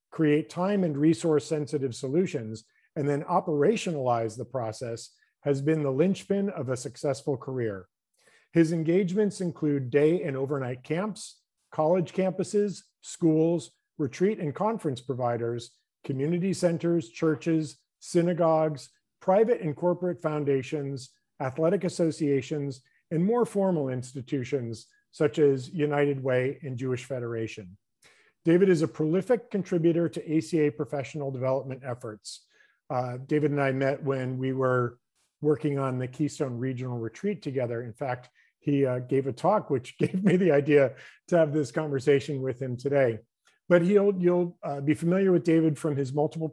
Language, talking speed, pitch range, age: English, 140 wpm, 130-170 Hz, 50-69